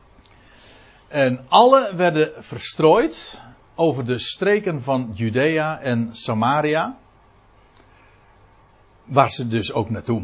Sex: male